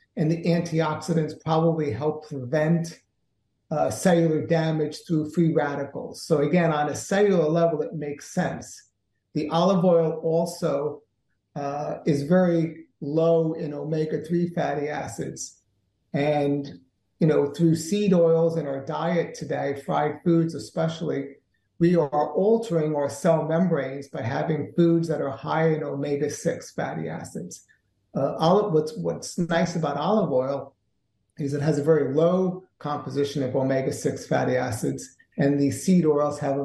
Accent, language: American, English